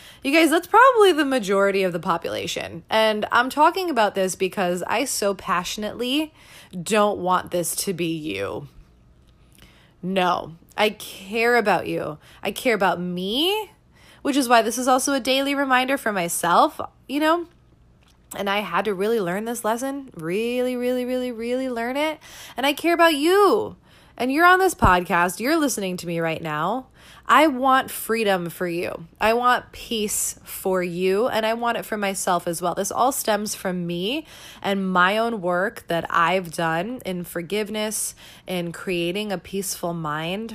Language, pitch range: English, 180-245 Hz